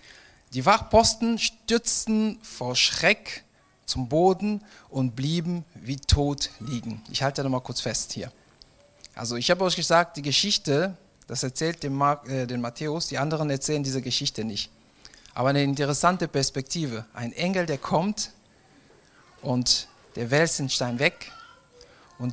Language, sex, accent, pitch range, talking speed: German, male, German, 125-170 Hz, 140 wpm